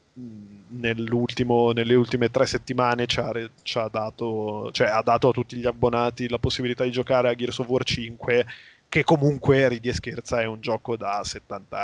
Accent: native